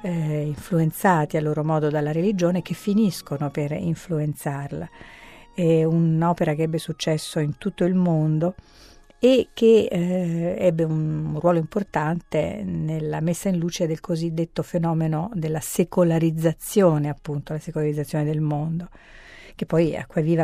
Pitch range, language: 155-175 Hz, Italian